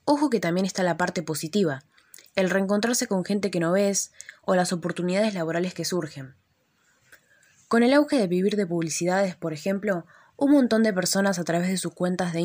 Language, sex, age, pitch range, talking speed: Spanish, female, 20-39, 170-210 Hz, 190 wpm